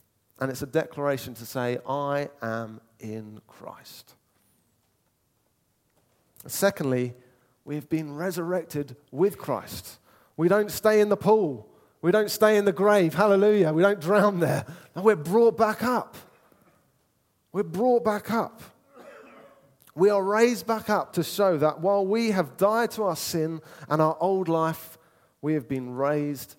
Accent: British